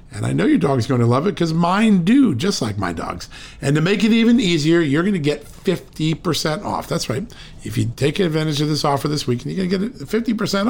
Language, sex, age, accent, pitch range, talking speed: English, male, 50-69, American, 130-170 Hz, 250 wpm